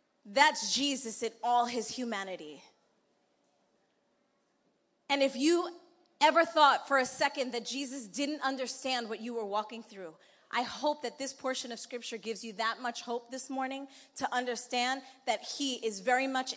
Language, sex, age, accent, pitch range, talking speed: English, female, 30-49, American, 240-300 Hz, 160 wpm